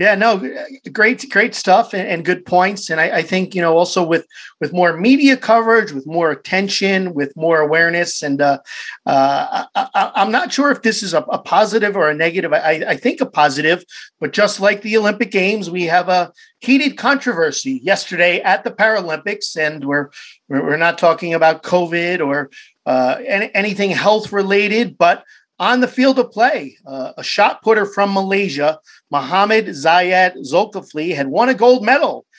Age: 40-59